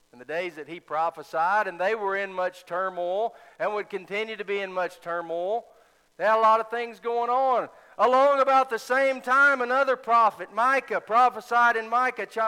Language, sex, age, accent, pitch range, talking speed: English, male, 40-59, American, 160-235 Hz, 190 wpm